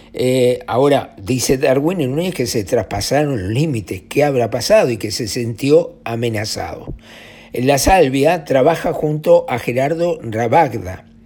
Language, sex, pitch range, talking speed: Spanish, male, 115-150 Hz, 140 wpm